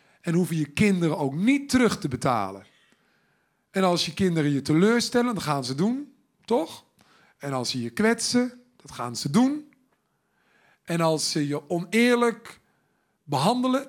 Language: Dutch